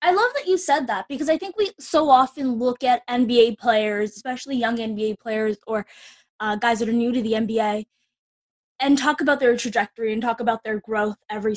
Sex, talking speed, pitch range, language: female, 205 wpm, 220-280 Hz, English